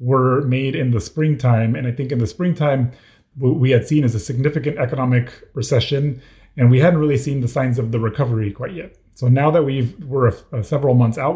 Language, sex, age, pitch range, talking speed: English, male, 30-49, 115-140 Hz, 220 wpm